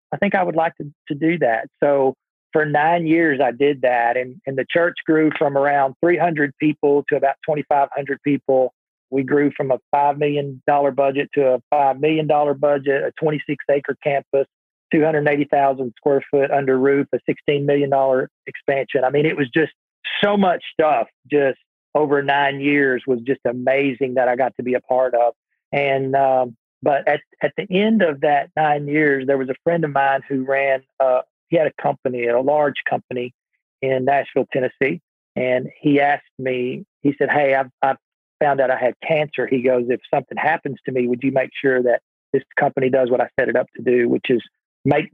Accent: American